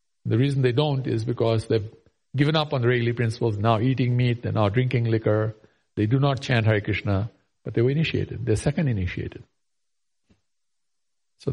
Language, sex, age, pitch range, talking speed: English, male, 50-69, 115-165 Hz, 175 wpm